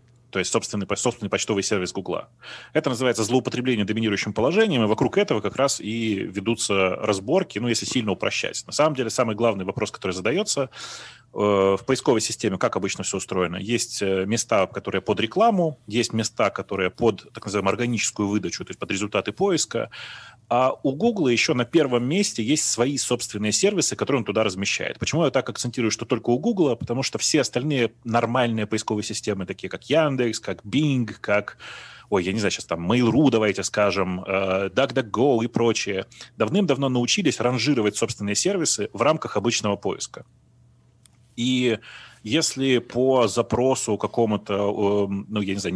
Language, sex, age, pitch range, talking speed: Russian, male, 30-49, 100-125 Hz, 160 wpm